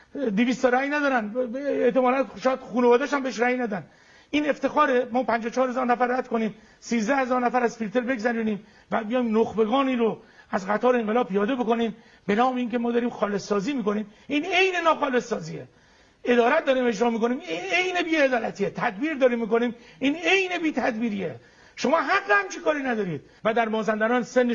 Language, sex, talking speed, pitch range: English, male, 165 wpm, 220-275 Hz